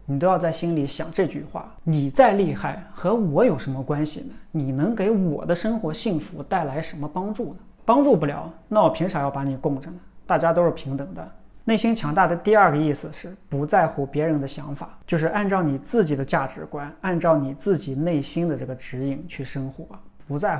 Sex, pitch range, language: male, 145-180 Hz, Chinese